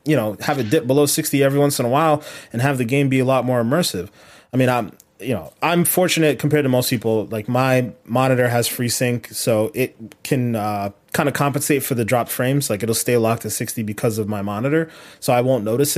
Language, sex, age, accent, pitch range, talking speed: English, male, 20-39, American, 115-150 Hz, 235 wpm